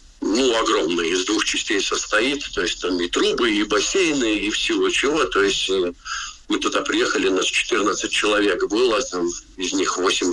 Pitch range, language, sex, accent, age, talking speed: 350-400 Hz, Russian, male, native, 50-69, 165 wpm